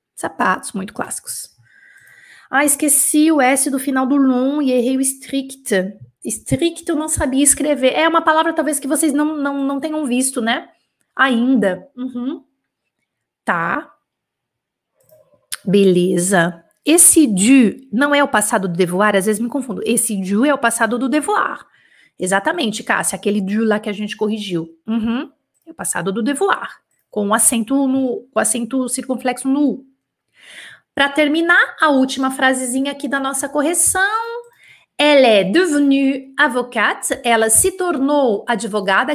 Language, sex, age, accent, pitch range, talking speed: French, female, 30-49, Brazilian, 210-285 Hz, 145 wpm